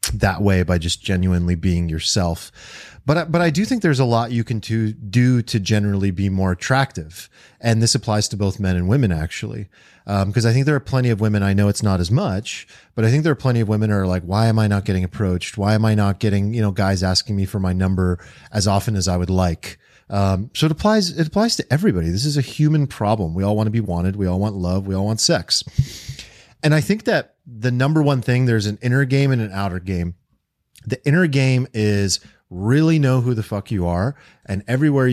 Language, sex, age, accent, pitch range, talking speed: English, male, 30-49, American, 100-135 Hz, 235 wpm